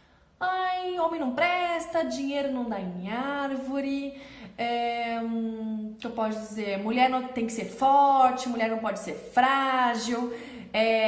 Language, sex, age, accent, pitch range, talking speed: Portuguese, female, 20-39, Brazilian, 205-270 Hz, 140 wpm